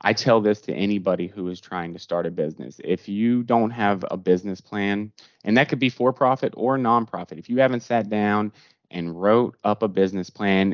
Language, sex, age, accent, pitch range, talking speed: English, male, 20-39, American, 90-105 Hz, 205 wpm